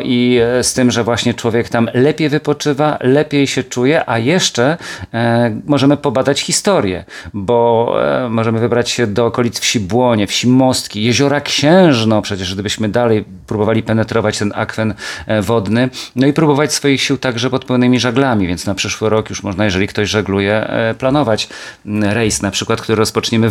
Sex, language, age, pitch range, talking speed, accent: male, Polish, 40-59, 105-125 Hz, 155 wpm, native